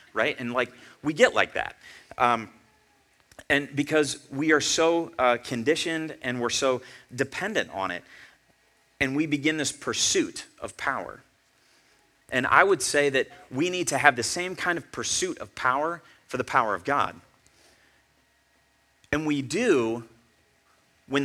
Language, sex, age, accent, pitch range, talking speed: English, male, 30-49, American, 120-145 Hz, 150 wpm